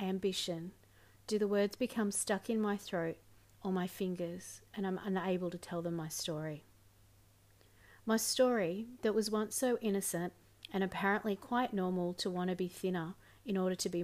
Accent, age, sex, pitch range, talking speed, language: Australian, 40-59, female, 155-200 Hz, 170 wpm, English